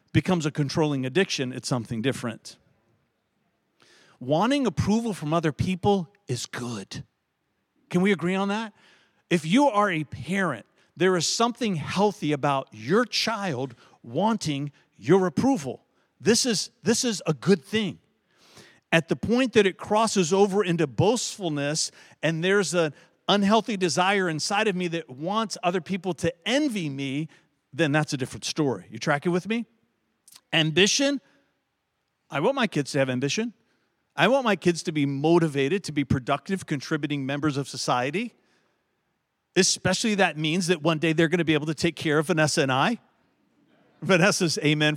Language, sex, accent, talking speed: English, male, American, 155 wpm